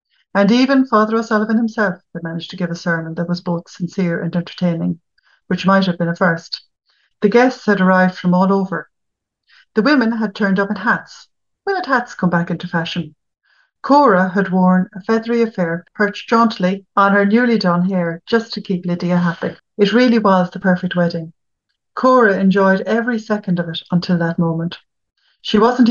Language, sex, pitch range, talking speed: English, female, 175-210 Hz, 185 wpm